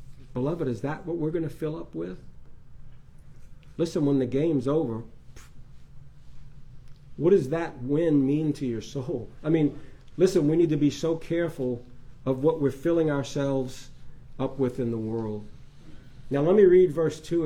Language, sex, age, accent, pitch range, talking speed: English, male, 50-69, American, 130-185 Hz, 165 wpm